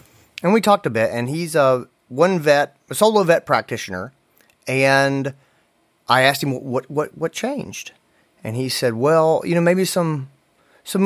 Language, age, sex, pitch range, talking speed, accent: English, 30-49, male, 120-185 Hz, 170 wpm, American